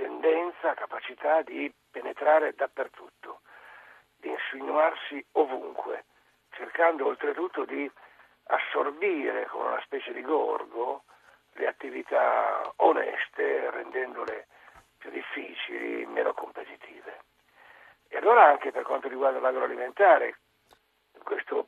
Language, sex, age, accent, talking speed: Italian, male, 50-69, native, 90 wpm